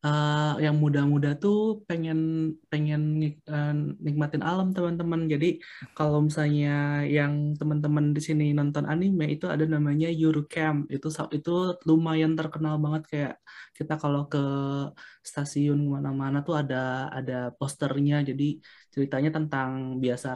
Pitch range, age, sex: 130-155 Hz, 20-39, male